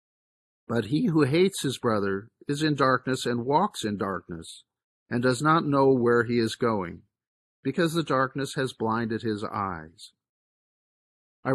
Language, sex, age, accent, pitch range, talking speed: English, male, 50-69, American, 110-140 Hz, 150 wpm